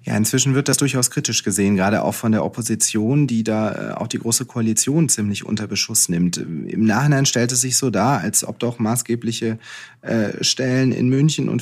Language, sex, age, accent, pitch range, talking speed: German, male, 30-49, German, 110-125 Hz, 190 wpm